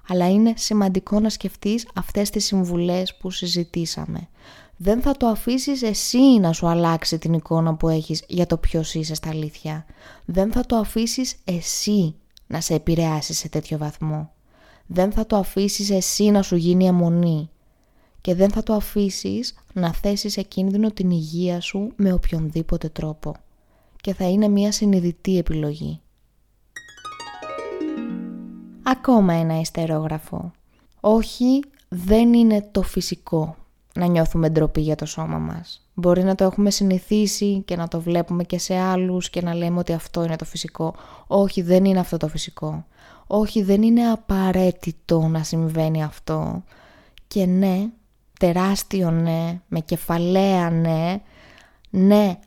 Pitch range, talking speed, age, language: 160-200 Hz, 145 wpm, 20-39, Greek